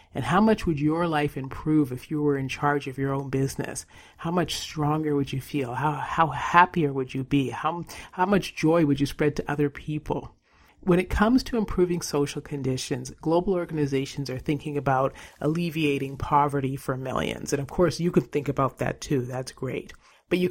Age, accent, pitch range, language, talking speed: 40-59, American, 140-175 Hz, English, 195 wpm